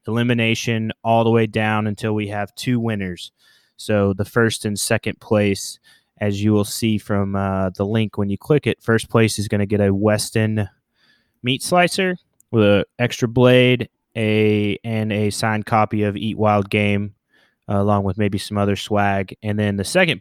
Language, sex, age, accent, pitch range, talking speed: English, male, 20-39, American, 100-115 Hz, 185 wpm